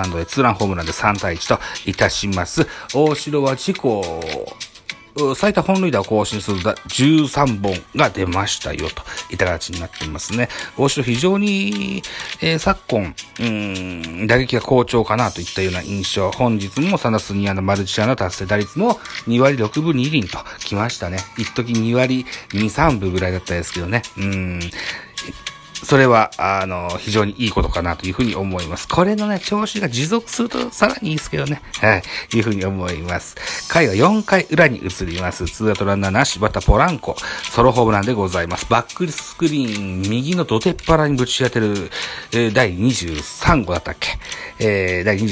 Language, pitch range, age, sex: Japanese, 95-145 Hz, 40-59, male